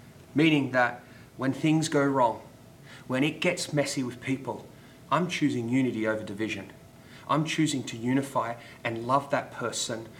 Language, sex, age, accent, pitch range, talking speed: English, male, 30-49, Australian, 125-155 Hz, 145 wpm